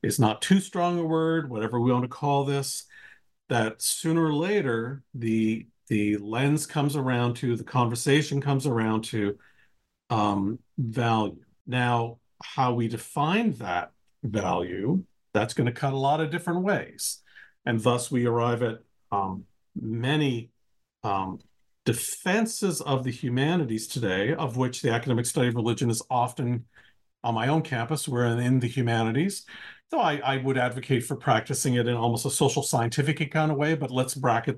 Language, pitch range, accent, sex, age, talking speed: English, 115-145 Hz, American, male, 50-69, 160 wpm